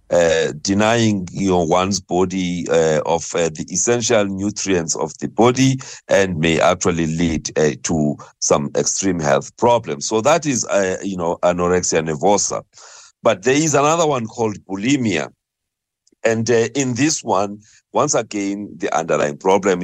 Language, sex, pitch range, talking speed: English, male, 95-125 Hz, 145 wpm